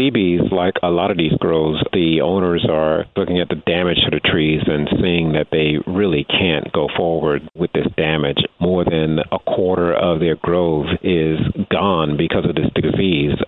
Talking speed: 185 wpm